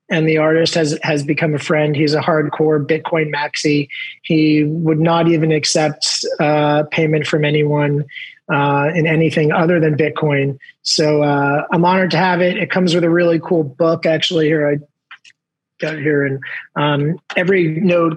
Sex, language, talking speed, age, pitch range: male, English, 170 wpm, 30-49, 150-170 Hz